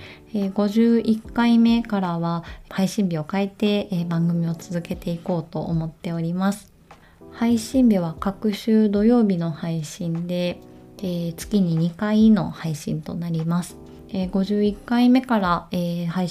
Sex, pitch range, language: female, 170-210 Hz, Japanese